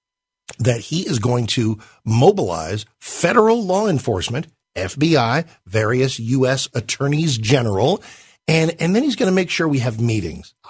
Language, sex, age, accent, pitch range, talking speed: English, male, 50-69, American, 105-140 Hz, 140 wpm